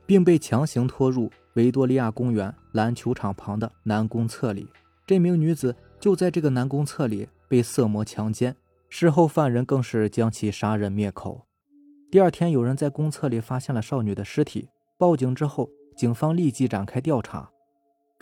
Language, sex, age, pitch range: Chinese, male, 20-39, 115-160 Hz